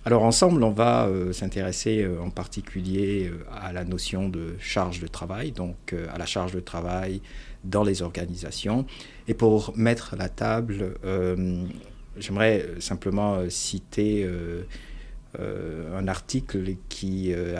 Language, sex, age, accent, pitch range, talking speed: French, male, 50-69, French, 90-110 Hz, 150 wpm